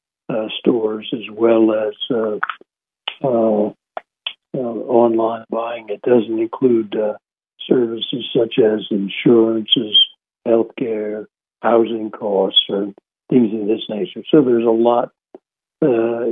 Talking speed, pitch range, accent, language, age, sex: 115 wpm, 105-120 Hz, American, English, 60-79, male